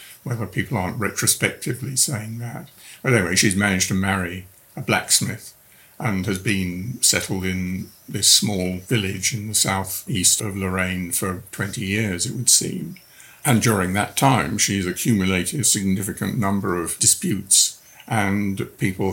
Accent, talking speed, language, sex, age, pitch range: British, 145 wpm, English, male, 50-69, 95-120 Hz